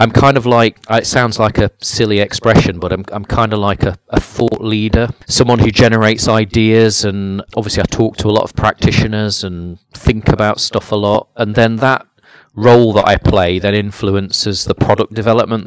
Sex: male